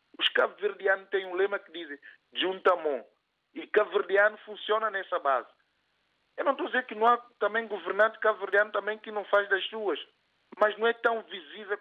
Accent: Brazilian